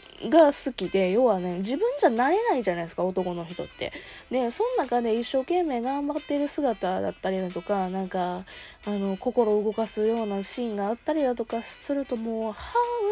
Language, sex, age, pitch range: Japanese, female, 20-39, 195-295 Hz